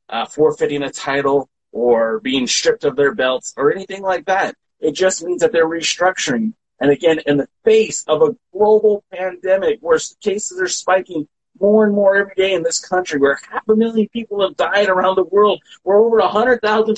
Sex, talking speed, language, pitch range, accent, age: male, 195 wpm, English, 140-225 Hz, American, 30-49